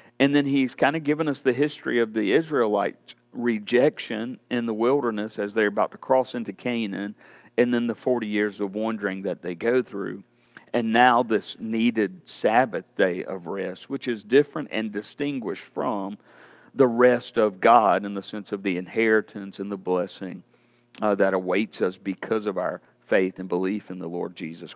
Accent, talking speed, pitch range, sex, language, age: American, 180 wpm, 105-125 Hz, male, English, 50-69